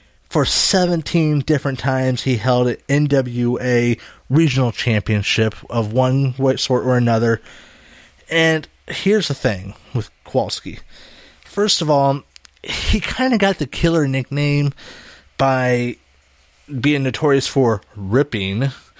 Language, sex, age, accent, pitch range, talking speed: English, male, 30-49, American, 110-140 Hz, 115 wpm